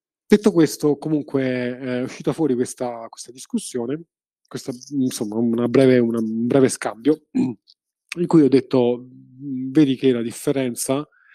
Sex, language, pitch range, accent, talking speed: male, Italian, 120-145 Hz, native, 120 wpm